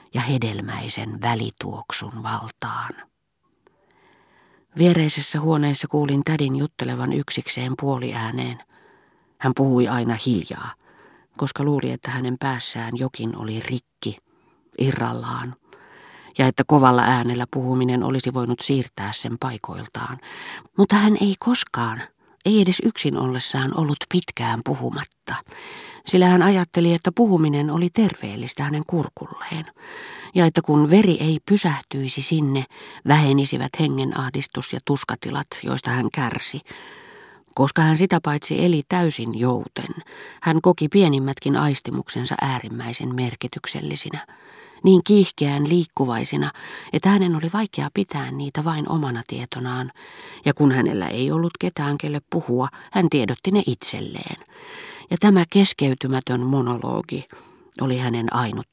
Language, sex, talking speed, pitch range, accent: Finnish, female, 115 wpm, 125-170 Hz, native